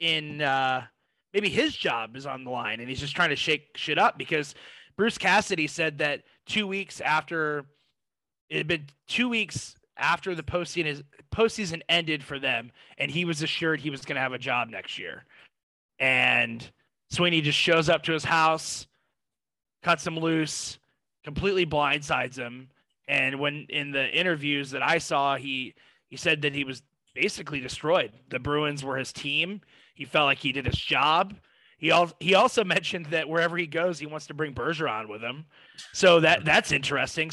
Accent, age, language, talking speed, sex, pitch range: American, 20-39, English, 180 wpm, male, 140-175 Hz